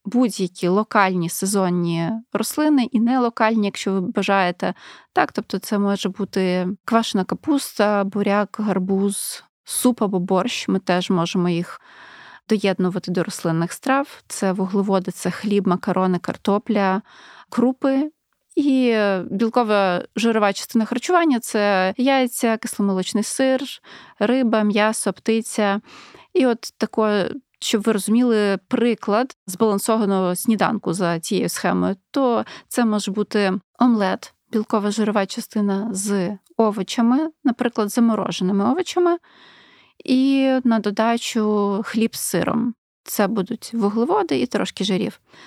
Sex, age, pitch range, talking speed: female, 20-39, 195-240 Hz, 110 wpm